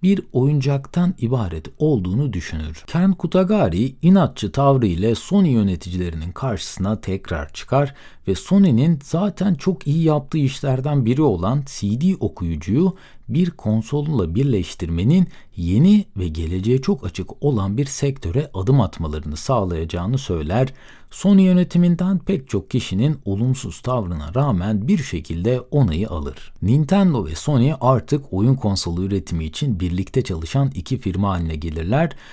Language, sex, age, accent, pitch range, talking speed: Turkish, male, 60-79, native, 90-145 Hz, 125 wpm